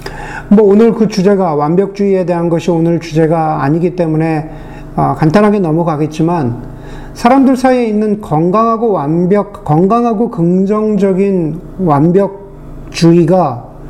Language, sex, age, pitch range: Korean, male, 40-59, 145-210 Hz